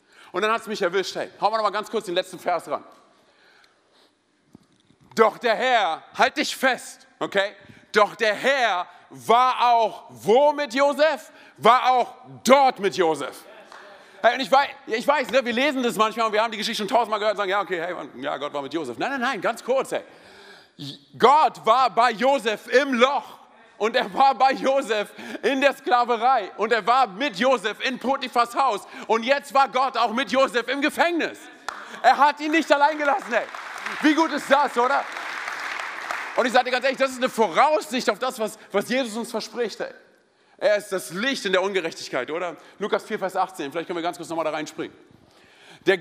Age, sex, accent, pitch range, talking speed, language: 40-59, male, German, 205-265 Hz, 200 wpm, German